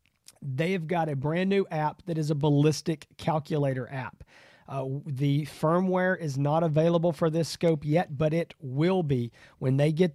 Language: English